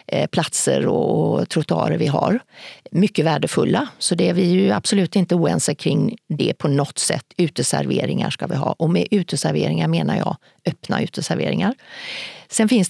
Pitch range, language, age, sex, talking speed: 160-200 Hz, Swedish, 40-59, female, 155 wpm